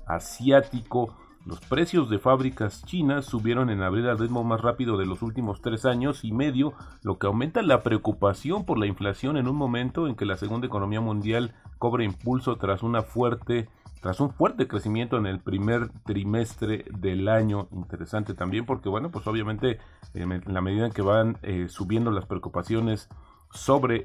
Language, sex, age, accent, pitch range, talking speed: Spanish, male, 40-59, Mexican, 95-120 Hz, 170 wpm